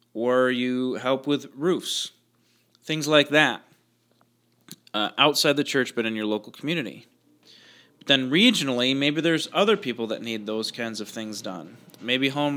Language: English